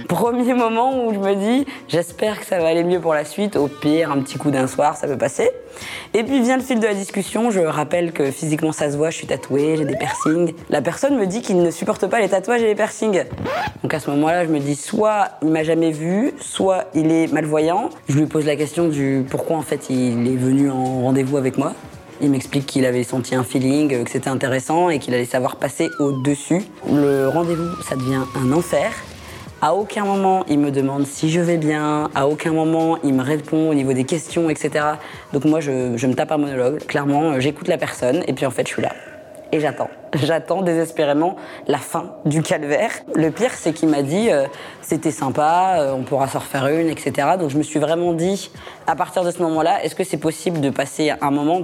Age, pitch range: 20-39, 140-175 Hz